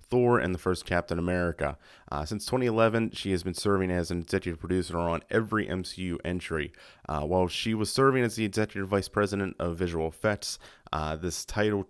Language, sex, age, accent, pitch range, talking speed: English, male, 30-49, American, 85-100 Hz, 185 wpm